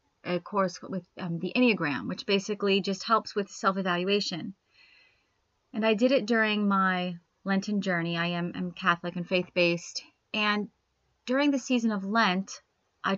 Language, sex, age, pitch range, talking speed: English, female, 30-49, 185-210 Hz, 160 wpm